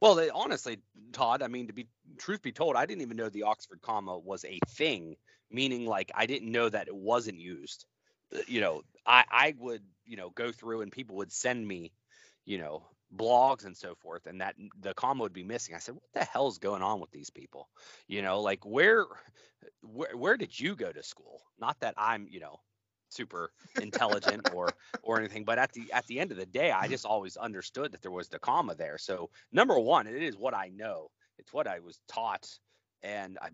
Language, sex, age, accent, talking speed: English, male, 30-49, American, 220 wpm